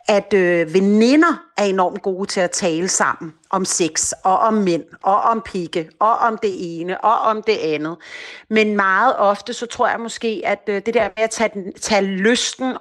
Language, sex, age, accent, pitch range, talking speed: Danish, female, 40-59, native, 185-225 Hz, 190 wpm